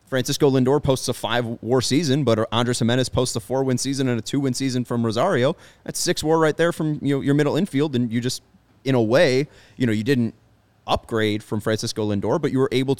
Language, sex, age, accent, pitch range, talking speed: English, male, 30-49, American, 105-125 Hz, 235 wpm